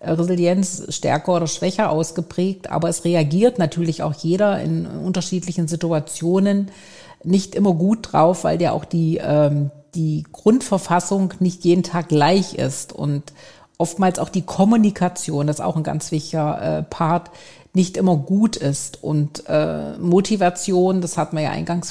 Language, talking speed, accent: German, 150 wpm, German